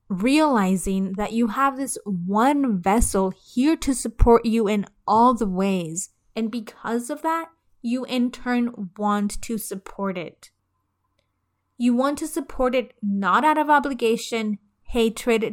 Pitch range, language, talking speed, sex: 195-240 Hz, English, 140 wpm, female